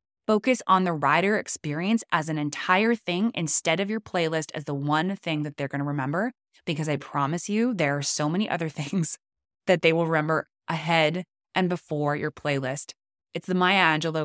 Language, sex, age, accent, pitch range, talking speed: English, female, 20-39, American, 145-185 Hz, 185 wpm